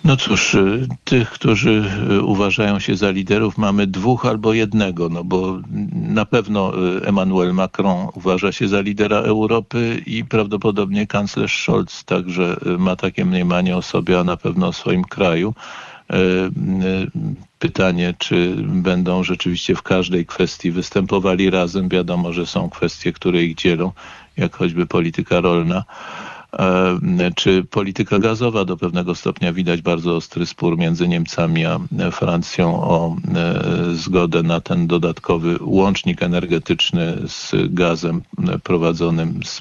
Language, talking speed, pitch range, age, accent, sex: Polish, 125 wpm, 85-100 Hz, 50-69, native, male